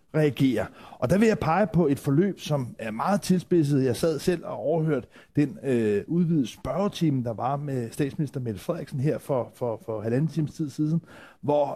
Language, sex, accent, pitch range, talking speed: Danish, male, native, 140-175 Hz, 185 wpm